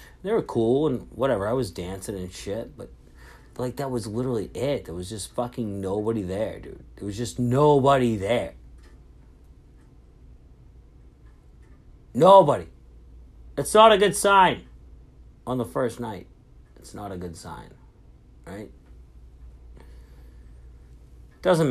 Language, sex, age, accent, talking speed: English, male, 40-59, American, 125 wpm